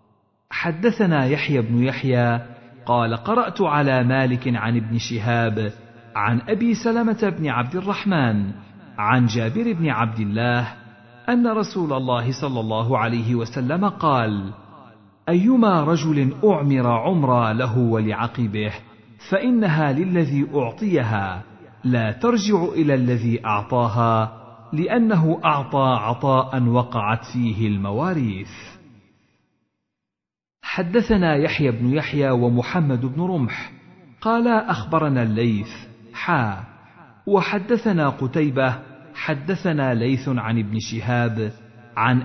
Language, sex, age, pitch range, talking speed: Arabic, male, 50-69, 115-160 Hz, 100 wpm